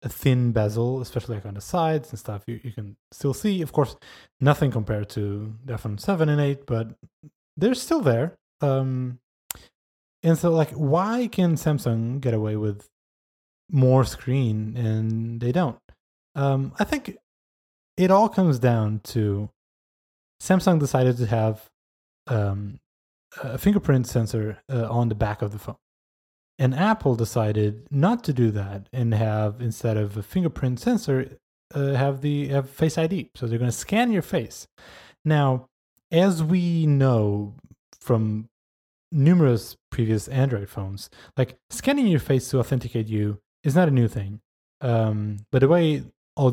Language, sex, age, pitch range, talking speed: English, male, 20-39, 110-145 Hz, 155 wpm